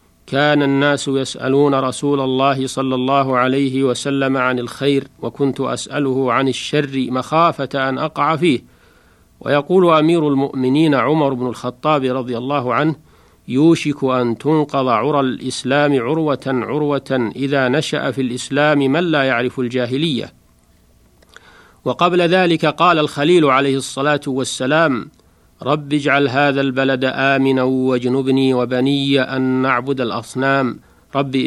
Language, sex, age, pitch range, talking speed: Arabic, male, 50-69, 130-150 Hz, 115 wpm